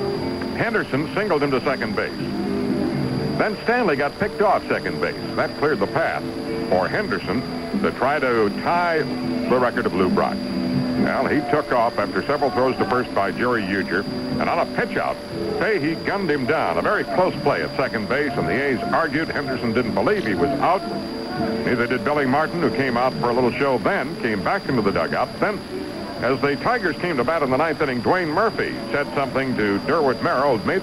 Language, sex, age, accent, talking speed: English, male, 60-79, American, 200 wpm